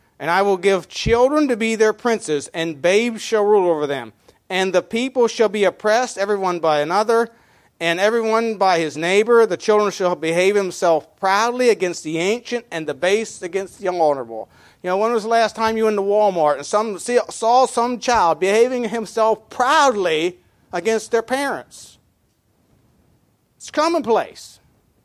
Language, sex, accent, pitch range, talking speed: English, male, American, 160-220 Hz, 165 wpm